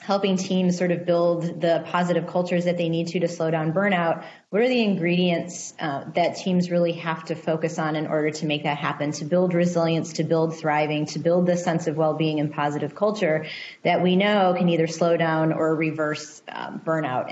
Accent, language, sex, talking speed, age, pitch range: American, English, female, 210 wpm, 30-49, 155-180 Hz